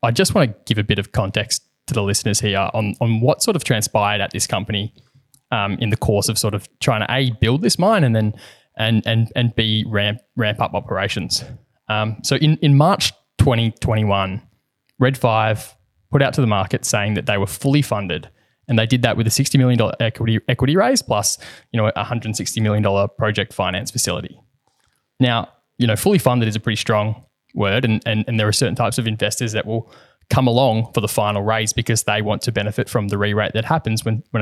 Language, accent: English, Australian